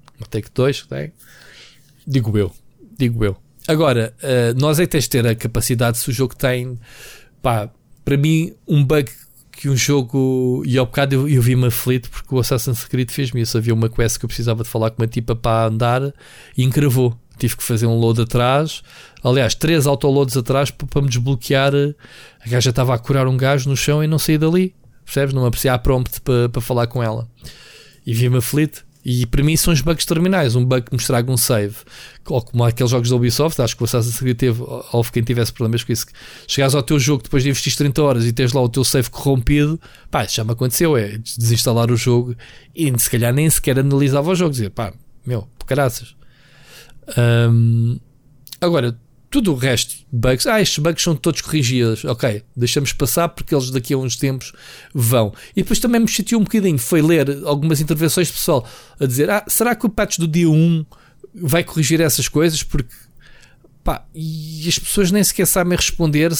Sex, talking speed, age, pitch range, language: male, 200 wpm, 20-39, 120-150 Hz, Portuguese